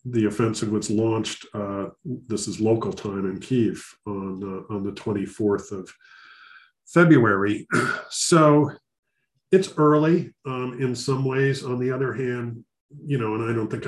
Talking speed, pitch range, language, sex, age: 150 wpm, 105-135 Hz, English, male, 50-69